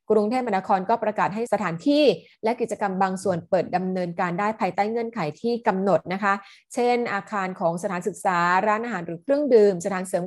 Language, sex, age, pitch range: Thai, female, 20-39, 185-220 Hz